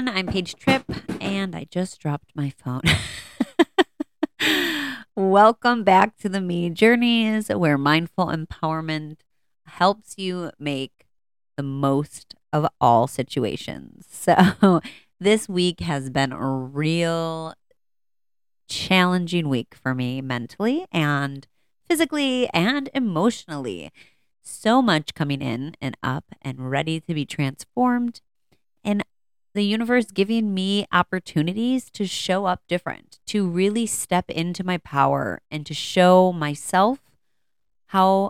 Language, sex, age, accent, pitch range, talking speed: English, female, 30-49, American, 145-205 Hz, 115 wpm